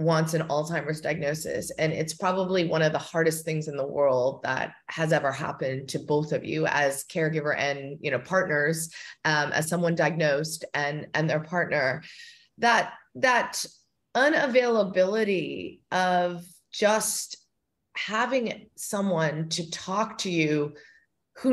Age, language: 30-49, English